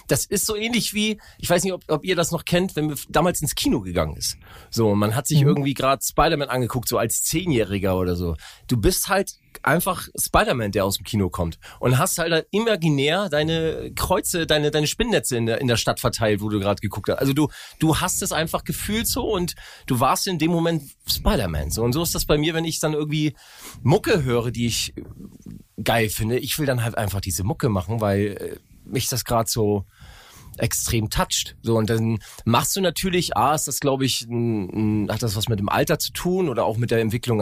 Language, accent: German, German